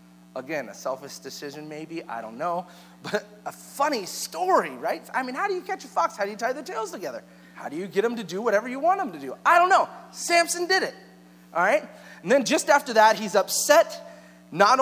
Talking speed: 230 wpm